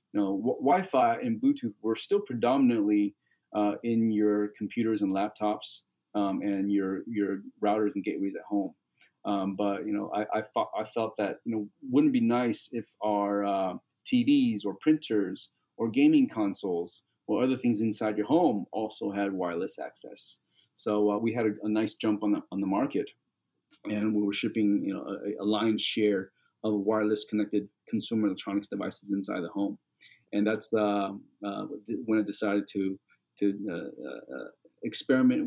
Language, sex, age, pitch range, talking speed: English, male, 30-49, 105-135 Hz, 175 wpm